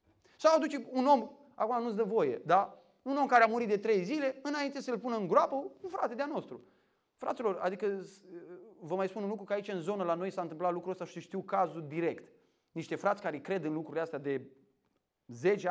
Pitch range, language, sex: 160-215 Hz, Romanian, male